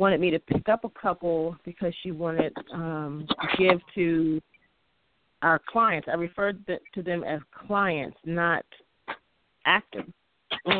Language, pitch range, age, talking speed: English, 160-195 Hz, 30-49, 135 wpm